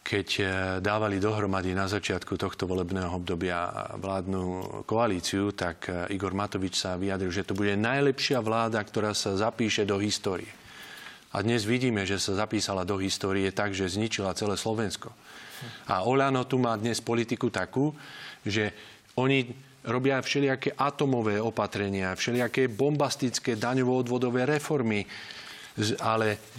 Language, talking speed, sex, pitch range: Slovak, 125 wpm, male, 100-130 Hz